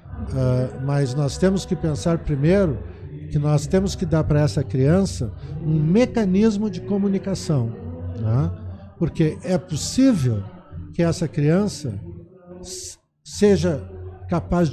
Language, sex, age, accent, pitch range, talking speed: Portuguese, male, 60-79, Brazilian, 125-180 Hz, 115 wpm